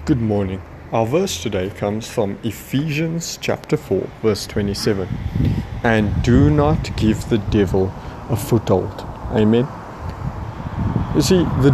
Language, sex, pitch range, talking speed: English, male, 105-130 Hz, 125 wpm